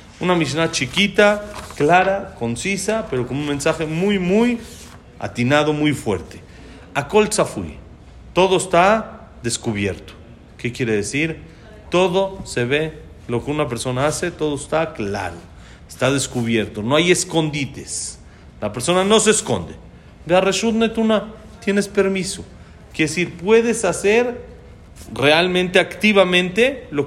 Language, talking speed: Spanish, 120 wpm